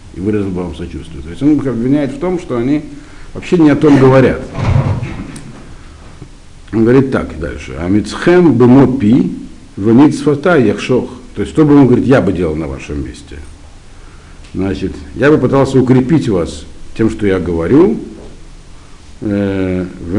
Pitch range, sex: 85-125 Hz, male